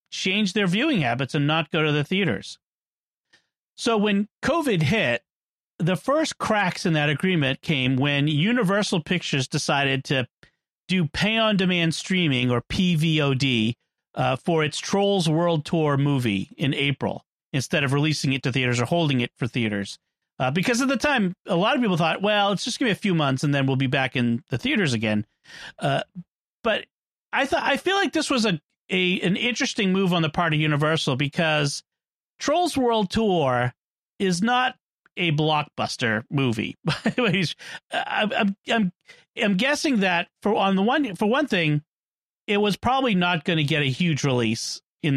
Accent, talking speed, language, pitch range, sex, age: American, 175 wpm, English, 145-205 Hz, male, 40-59